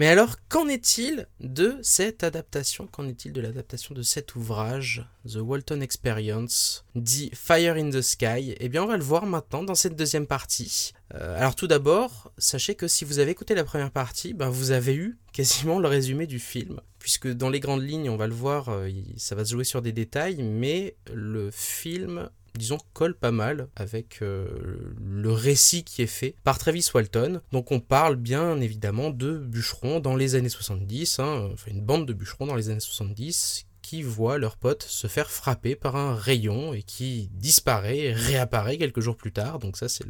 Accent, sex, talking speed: French, male, 195 wpm